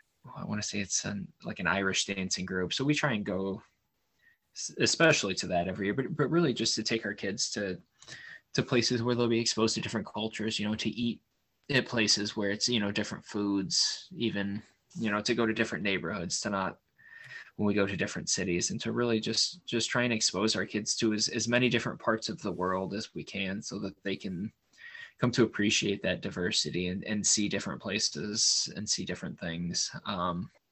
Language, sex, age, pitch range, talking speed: English, male, 20-39, 100-120 Hz, 210 wpm